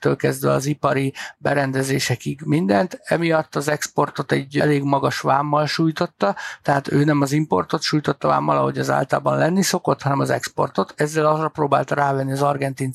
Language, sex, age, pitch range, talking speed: Hungarian, male, 60-79, 140-160 Hz, 160 wpm